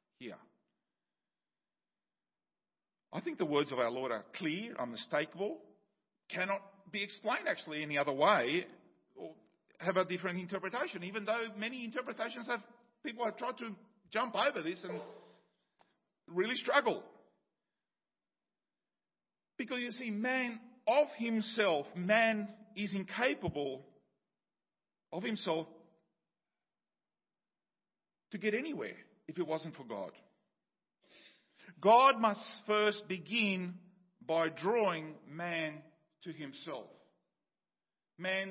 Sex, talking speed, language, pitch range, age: male, 105 wpm, English, 180-235 Hz, 50-69